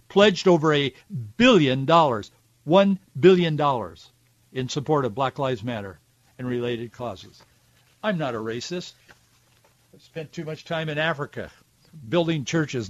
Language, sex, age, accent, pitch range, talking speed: English, male, 60-79, American, 120-170 Hz, 140 wpm